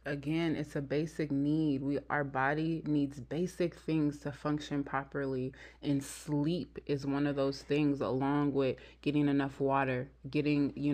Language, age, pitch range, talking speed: English, 20-39, 145-180 Hz, 155 wpm